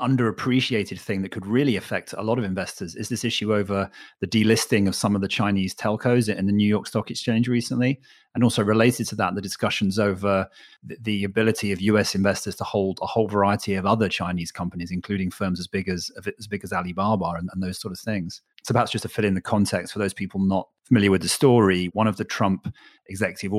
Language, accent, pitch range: English, British, 95-105 Hz